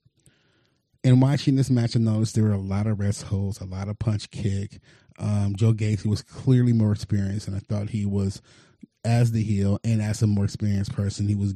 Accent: American